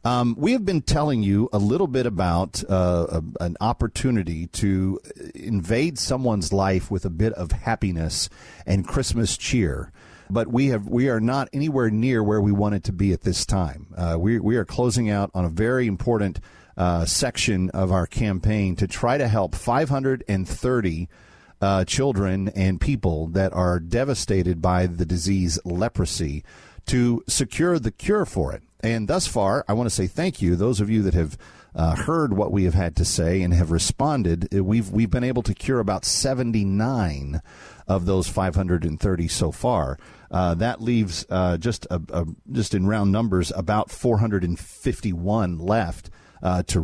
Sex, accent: male, American